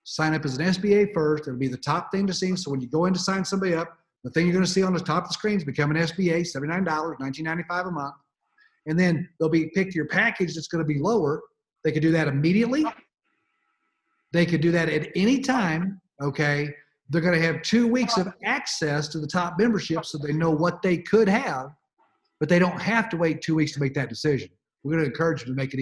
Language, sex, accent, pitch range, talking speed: English, male, American, 145-185 Hz, 245 wpm